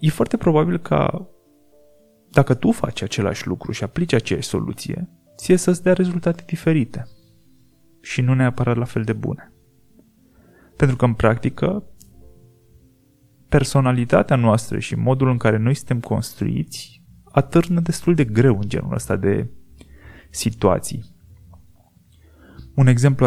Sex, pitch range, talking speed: male, 105-140 Hz, 125 wpm